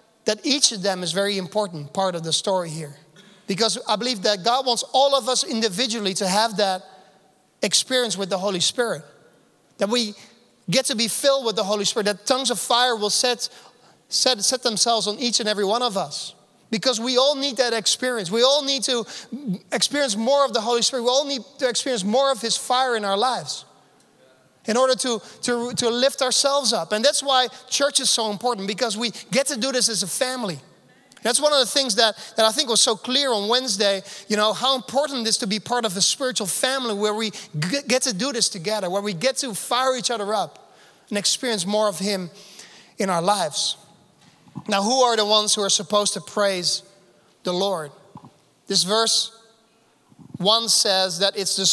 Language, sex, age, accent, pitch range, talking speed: English, male, 30-49, Dutch, 200-250 Hz, 205 wpm